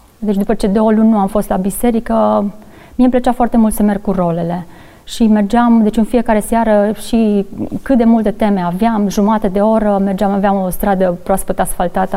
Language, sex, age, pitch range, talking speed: Romanian, female, 30-49, 195-235 Hz, 200 wpm